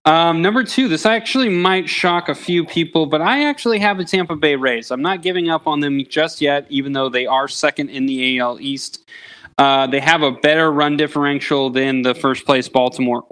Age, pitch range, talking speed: 20-39, 125-150 Hz, 205 wpm